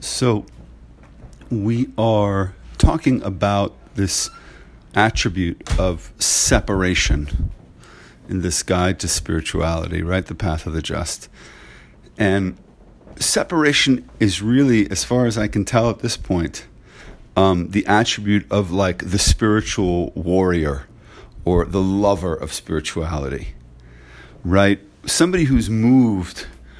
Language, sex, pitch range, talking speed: English, male, 85-110 Hz, 110 wpm